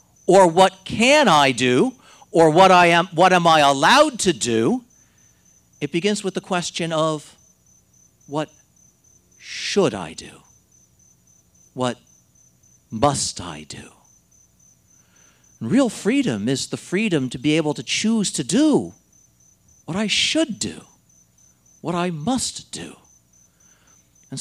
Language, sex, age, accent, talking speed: English, male, 50-69, American, 125 wpm